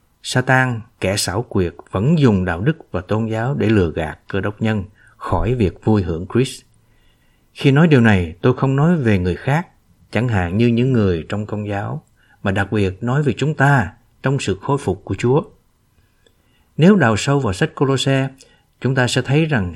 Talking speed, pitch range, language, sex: 195 wpm, 100-130 Hz, Vietnamese, male